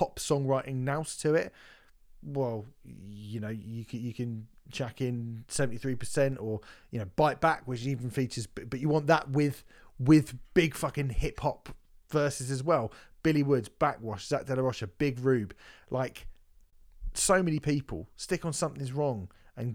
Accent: British